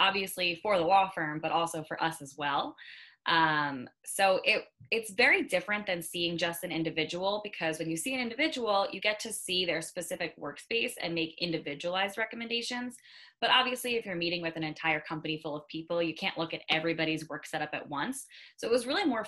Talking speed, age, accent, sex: 200 wpm, 10-29, American, female